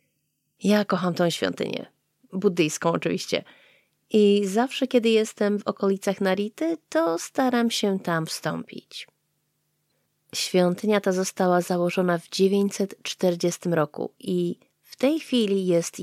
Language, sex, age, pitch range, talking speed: Polish, female, 30-49, 180-230 Hz, 110 wpm